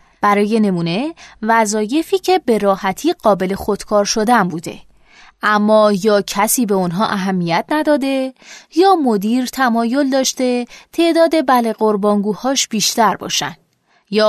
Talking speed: 115 wpm